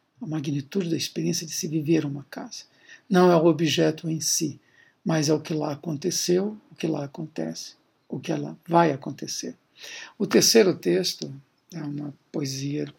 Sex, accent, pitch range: male, Brazilian, 145-170 Hz